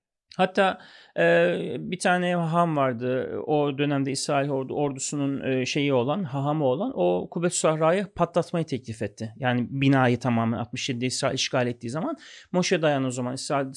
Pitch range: 140-190 Hz